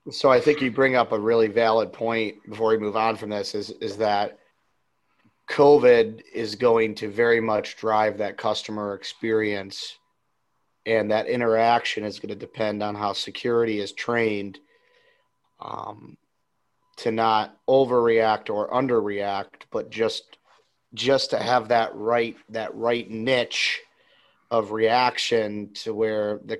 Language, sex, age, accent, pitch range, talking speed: English, male, 30-49, American, 110-125 Hz, 140 wpm